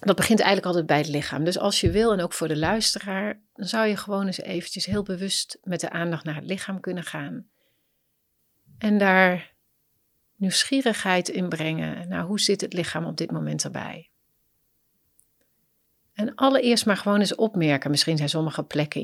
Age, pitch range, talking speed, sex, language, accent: 40-59, 145-185 Hz, 175 wpm, female, Dutch, Dutch